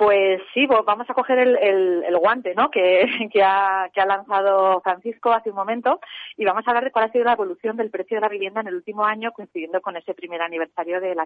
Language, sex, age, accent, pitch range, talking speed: Spanish, female, 30-49, Spanish, 180-220 Hz, 245 wpm